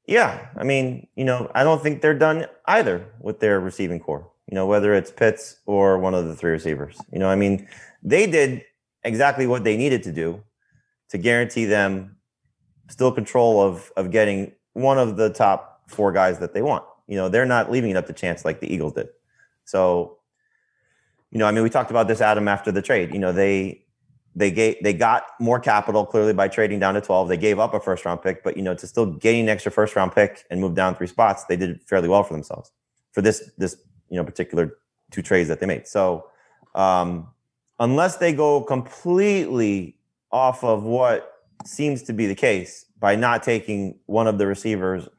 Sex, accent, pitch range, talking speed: male, American, 95-120 Hz, 210 wpm